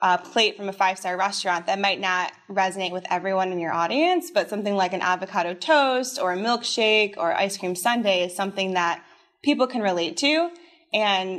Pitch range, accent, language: 180-225 Hz, American, English